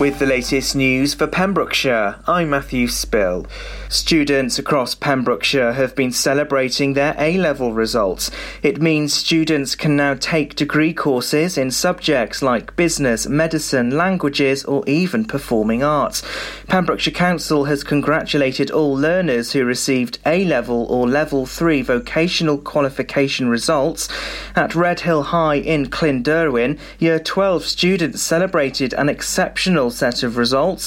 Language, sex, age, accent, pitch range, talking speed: English, male, 30-49, British, 130-160 Hz, 125 wpm